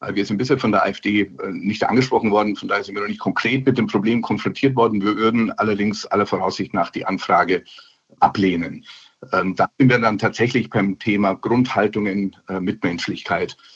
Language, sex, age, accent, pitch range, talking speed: German, male, 50-69, German, 110-135 Hz, 175 wpm